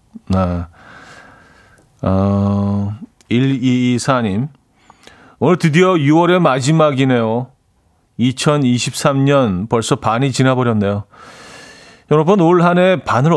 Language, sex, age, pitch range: Korean, male, 40-59, 100-140 Hz